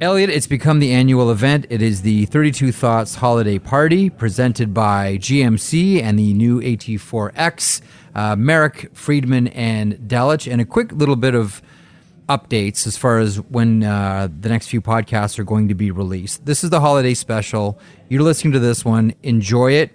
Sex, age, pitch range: male, 30-49, 105-130 Hz